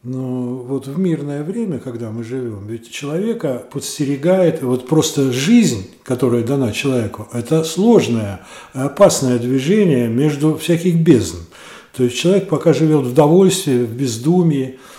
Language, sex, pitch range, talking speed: Russian, male, 120-155 Hz, 130 wpm